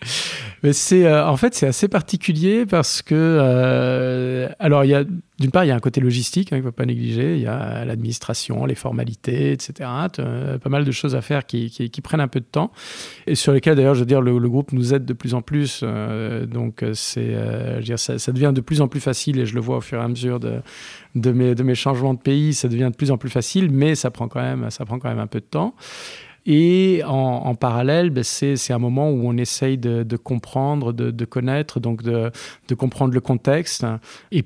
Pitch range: 120-145 Hz